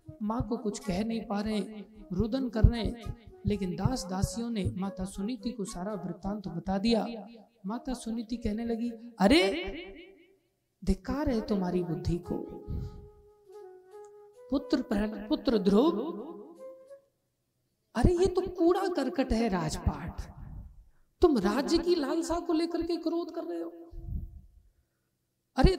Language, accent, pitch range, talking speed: Hindi, native, 220-320 Hz, 125 wpm